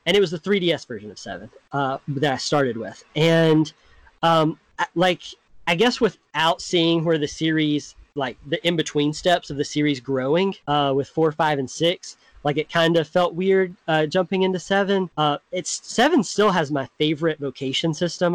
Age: 20-39